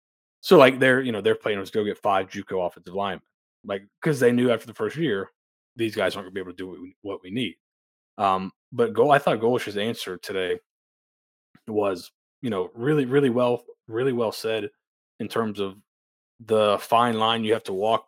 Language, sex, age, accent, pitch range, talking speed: English, male, 20-39, American, 100-125 Hz, 205 wpm